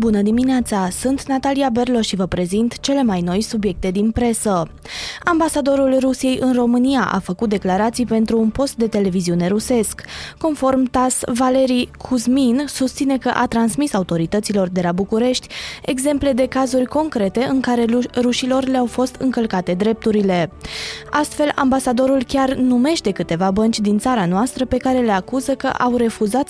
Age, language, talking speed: 20-39, Romanian, 150 wpm